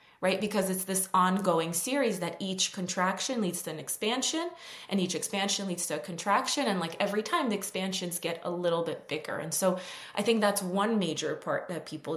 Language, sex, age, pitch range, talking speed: English, female, 20-39, 175-210 Hz, 200 wpm